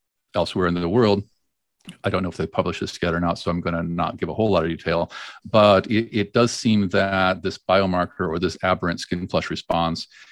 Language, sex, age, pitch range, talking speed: English, male, 50-69, 85-95 Hz, 225 wpm